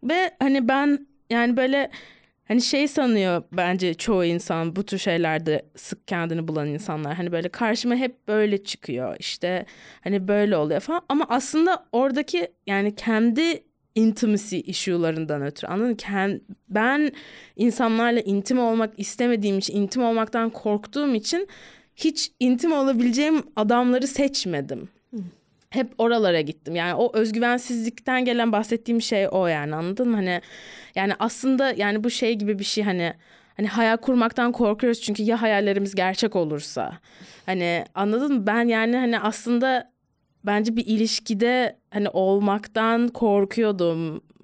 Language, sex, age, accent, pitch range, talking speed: Turkish, female, 20-39, native, 185-240 Hz, 135 wpm